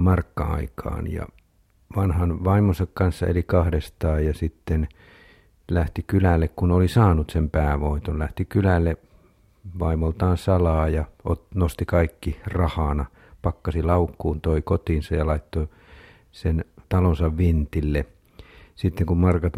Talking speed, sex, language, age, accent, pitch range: 110 wpm, male, Finnish, 50-69, native, 80-90 Hz